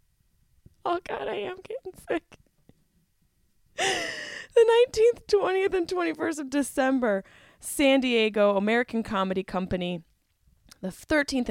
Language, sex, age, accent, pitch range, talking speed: English, female, 20-39, American, 170-245 Hz, 105 wpm